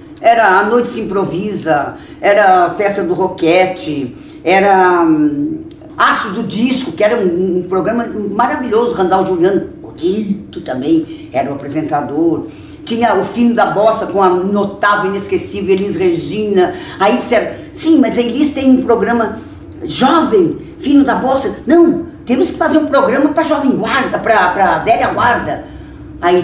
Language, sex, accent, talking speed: English, female, Brazilian, 150 wpm